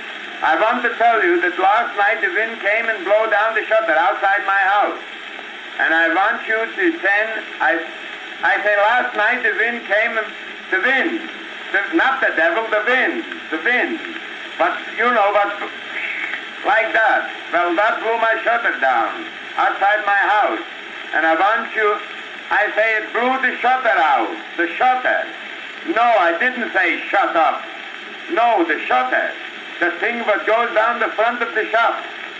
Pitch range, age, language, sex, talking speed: 215-330 Hz, 60-79, English, male, 170 wpm